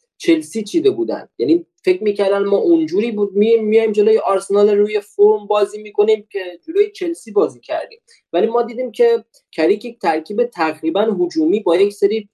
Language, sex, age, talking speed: Persian, male, 20-39, 155 wpm